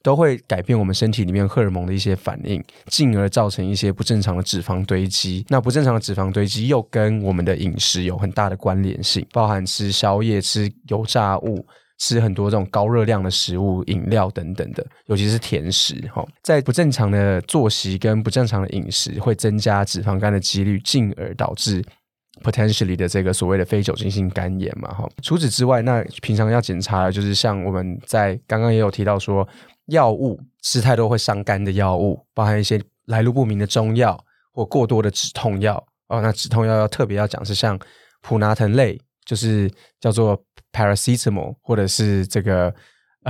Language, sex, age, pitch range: Chinese, male, 20-39, 100-115 Hz